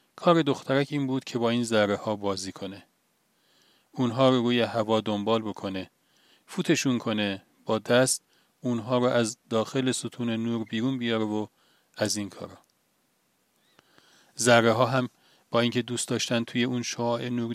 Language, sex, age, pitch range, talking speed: Persian, male, 40-59, 110-135 Hz, 145 wpm